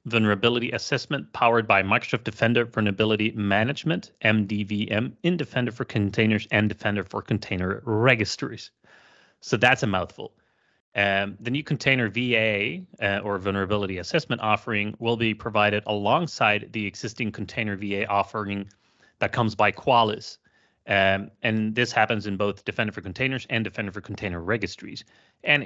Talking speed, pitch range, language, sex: 140 wpm, 100-115 Hz, English, male